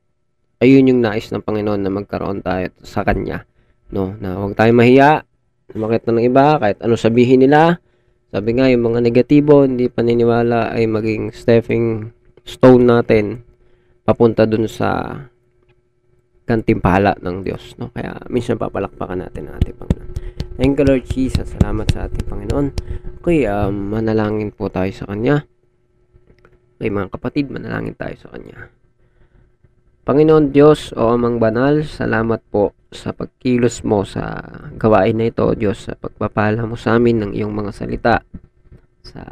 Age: 20-39